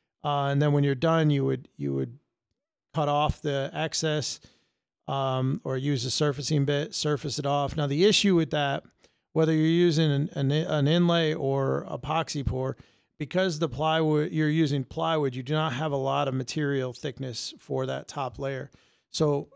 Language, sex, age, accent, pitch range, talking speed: English, male, 40-59, American, 135-155 Hz, 175 wpm